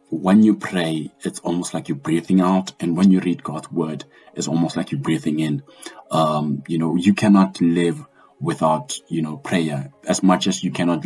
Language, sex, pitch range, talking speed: English, male, 85-100 Hz, 195 wpm